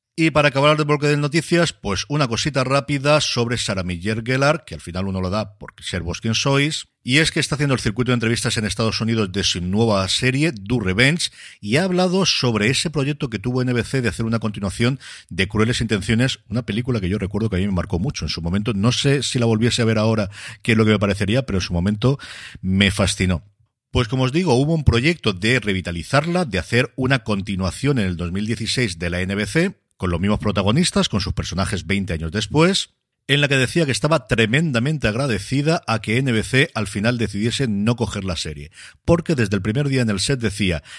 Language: Spanish